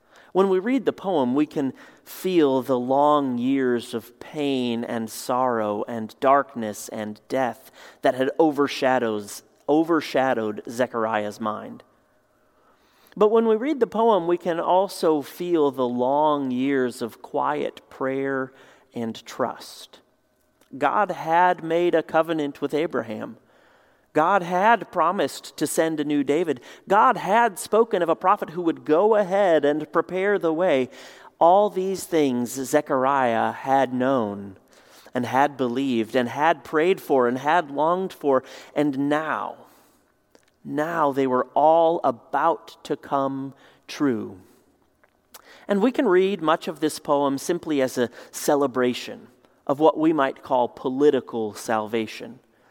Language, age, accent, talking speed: English, 40-59, American, 135 wpm